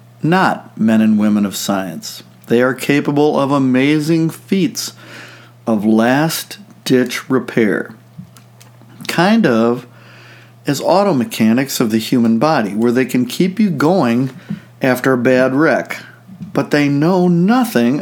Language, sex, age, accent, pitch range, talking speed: English, male, 50-69, American, 115-145 Hz, 125 wpm